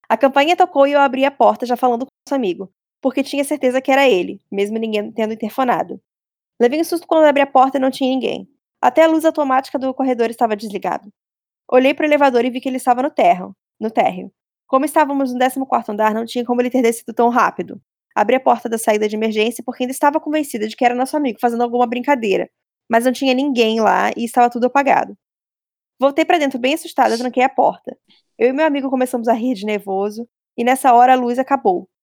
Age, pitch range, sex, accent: 20-39, 220-270 Hz, female, Brazilian